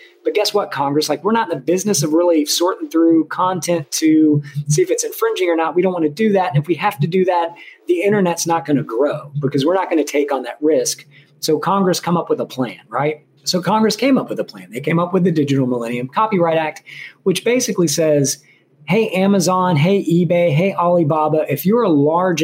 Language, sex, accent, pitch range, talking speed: English, male, American, 150-190 Hz, 235 wpm